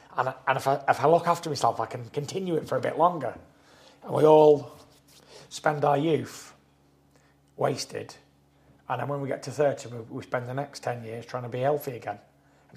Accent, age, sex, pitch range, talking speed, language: British, 30-49, male, 115-145 Hz, 195 wpm, English